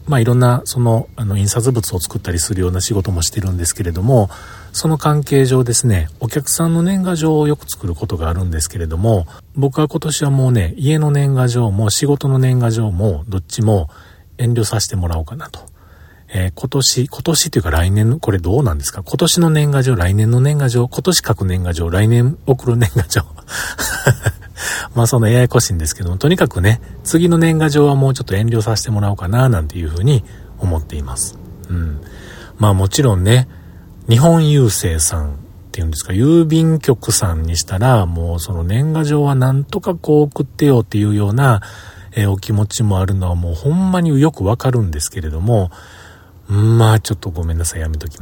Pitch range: 90-130 Hz